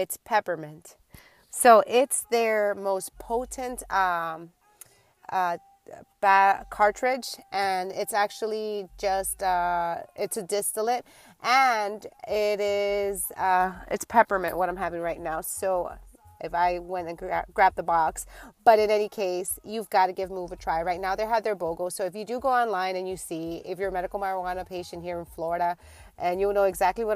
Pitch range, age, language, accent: 180-210 Hz, 30-49, English, American